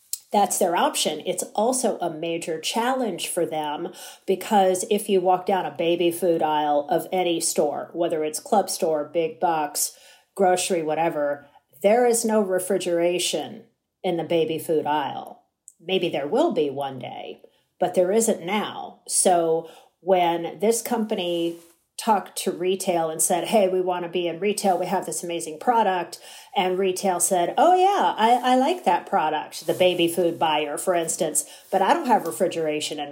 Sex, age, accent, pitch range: female, 40-59, American, 165-210 Hz